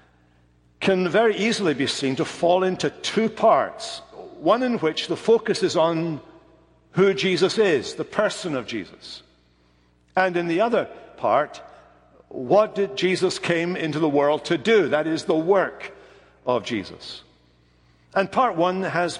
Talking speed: 150 wpm